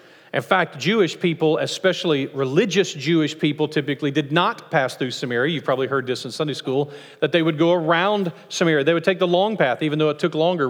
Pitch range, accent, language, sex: 135-160 Hz, American, English, male